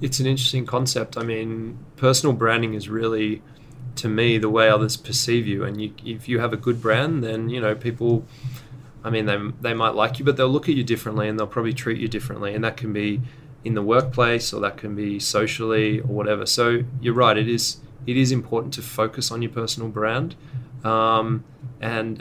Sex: male